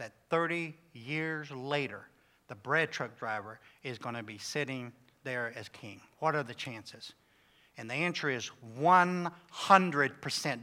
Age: 50-69